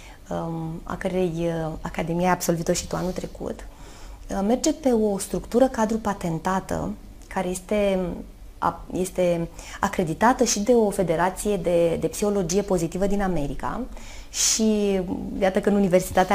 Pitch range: 175-245 Hz